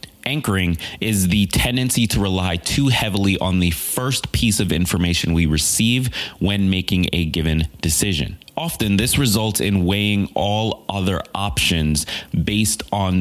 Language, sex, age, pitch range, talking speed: English, male, 20-39, 85-110 Hz, 140 wpm